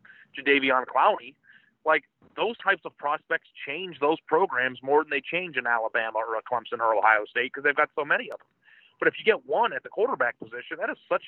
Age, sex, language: 30-49, male, English